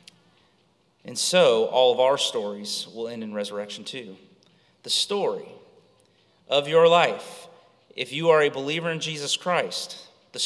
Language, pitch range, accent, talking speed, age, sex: English, 135-210 Hz, American, 145 wpm, 30-49, male